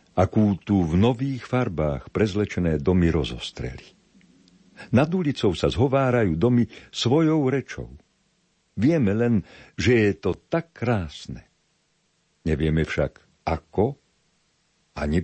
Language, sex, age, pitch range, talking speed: Slovak, male, 60-79, 80-110 Hz, 100 wpm